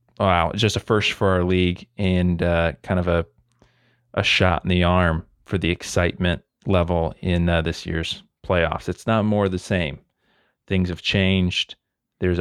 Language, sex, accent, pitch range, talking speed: English, male, American, 85-100 Hz, 170 wpm